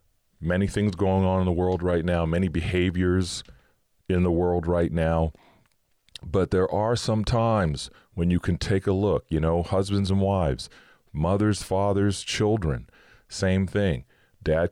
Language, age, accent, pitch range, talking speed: English, 40-59, American, 80-100 Hz, 155 wpm